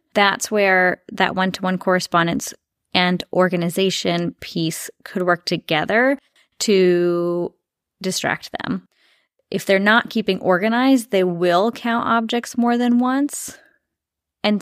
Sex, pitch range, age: female, 175-220 Hz, 20-39